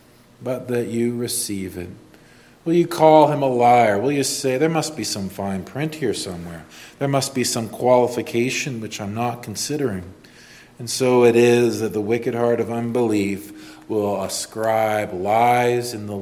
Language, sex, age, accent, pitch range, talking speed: English, male, 40-59, American, 100-130 Hz, 170 wpm